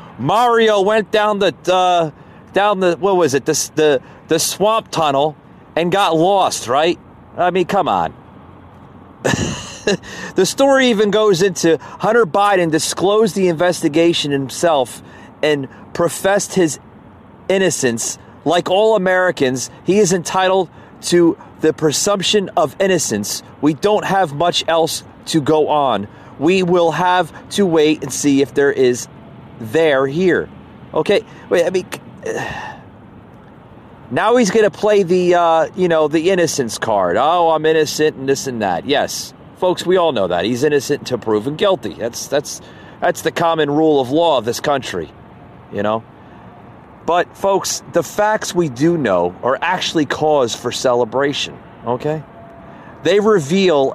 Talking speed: 145 wpm